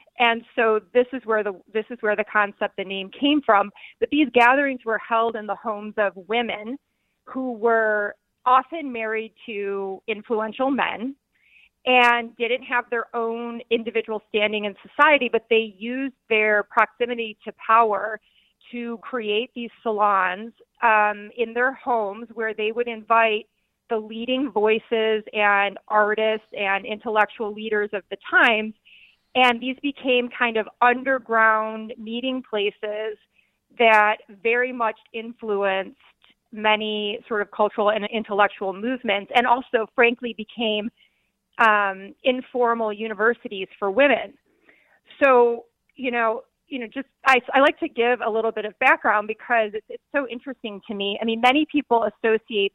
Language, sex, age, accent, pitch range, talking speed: English, female, 30-49, American, 210-245 Hz, 145 wpm